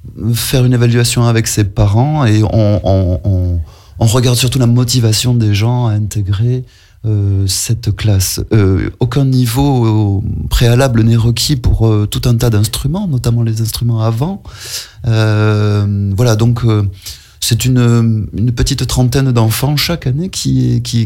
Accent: French